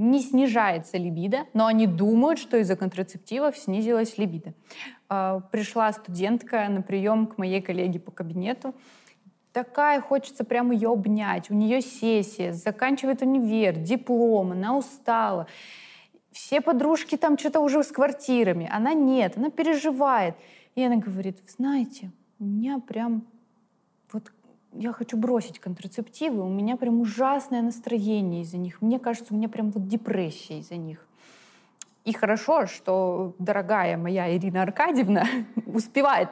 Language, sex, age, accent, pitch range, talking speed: Russian, female, 20-39, native, 185-245 Hz, 130 wpm